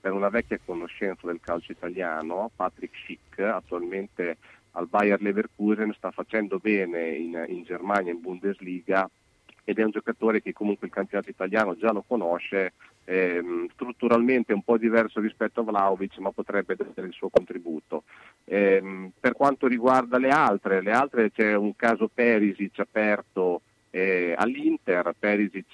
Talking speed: 145 wpm